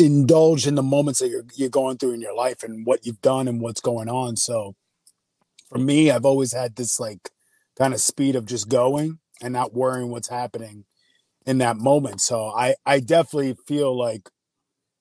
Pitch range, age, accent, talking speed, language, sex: 120-150 Hz, 30-49, American, 190 wpm, English, male